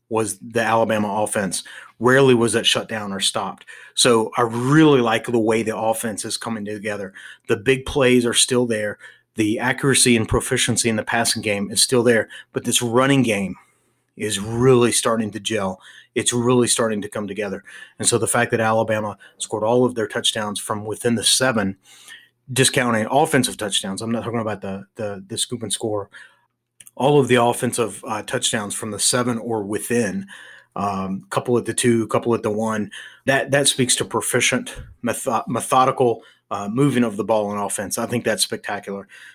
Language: English